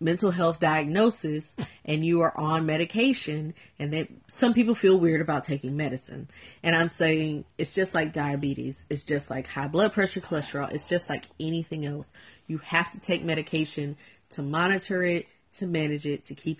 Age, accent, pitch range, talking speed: 30-49, American, 150-180 Hz, 175 wpm